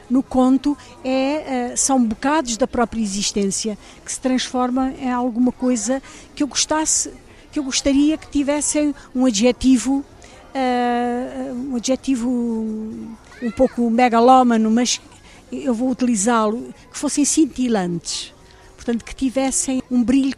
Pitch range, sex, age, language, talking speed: 230-265 Hz, female, 50-69, Portuguese, 120 wpm